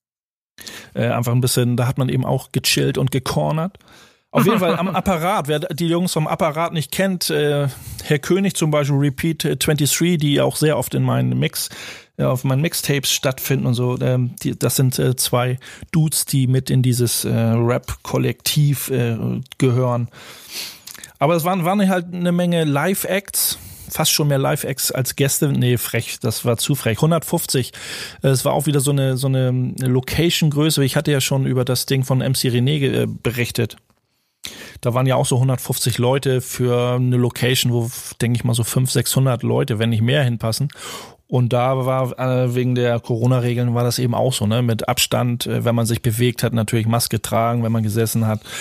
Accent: German